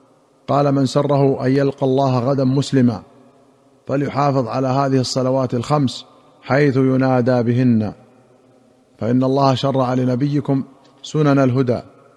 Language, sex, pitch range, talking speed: Arabic, male, 130-145 Hz, 110 wpm